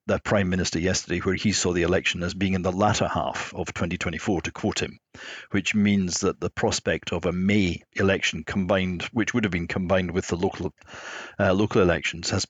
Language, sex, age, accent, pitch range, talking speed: English, male, 50-69, British, 95-105 Hz, 200 wpm